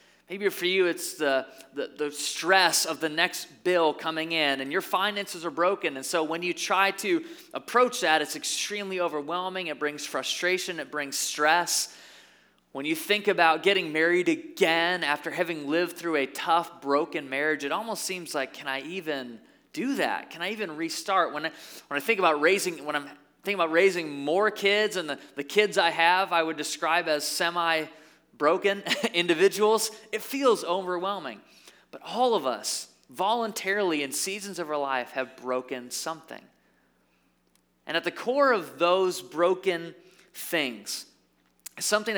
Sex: male